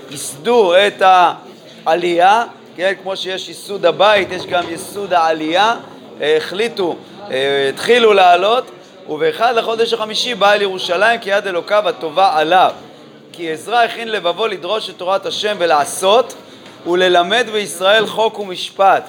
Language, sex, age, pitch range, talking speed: Hebrew, male, 30-49, 175-215 Hz, 125 wpm